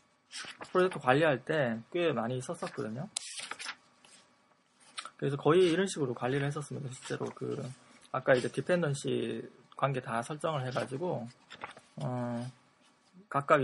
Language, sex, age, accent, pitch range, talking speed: English, male, 20-39, Korean, 125-170 Hz, 95 wpm